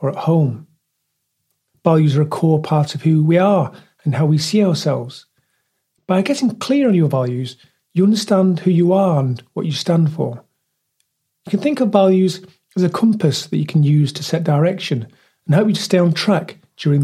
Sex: male